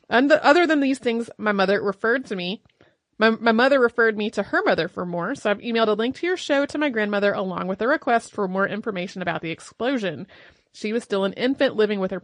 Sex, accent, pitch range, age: female, American, 195-235 Hz, 30-49